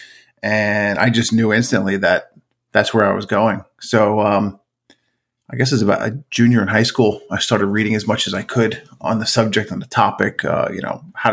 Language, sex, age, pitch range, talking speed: English, male, 30-49, 105-125 Hz, 210 wpm